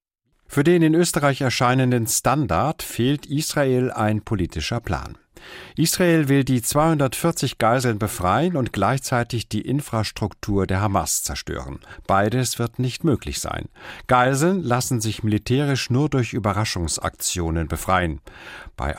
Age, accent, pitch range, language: 50-69, German, 100-140 Hz, German